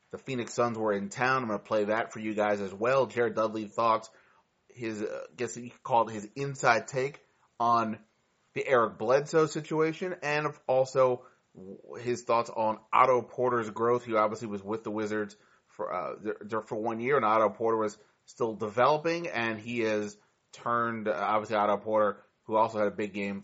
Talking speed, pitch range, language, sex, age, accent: 185 wpm, 105-130 Hz, English, male, 30-49, American